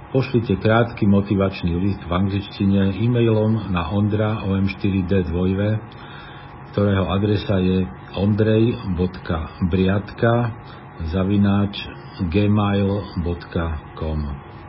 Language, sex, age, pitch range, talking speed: Slovak, male, 50-69, 95-110 Hz, 70 wpm